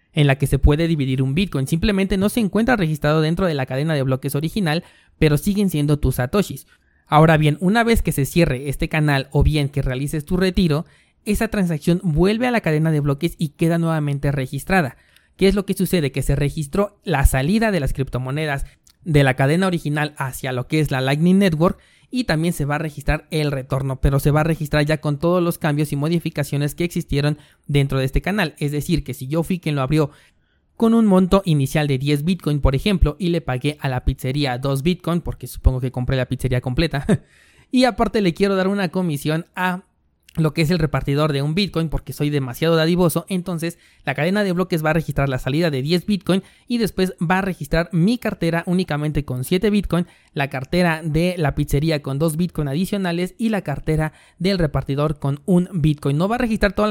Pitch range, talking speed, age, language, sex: 140-180 Hz, 210 wpm, 30-49, Spanish, male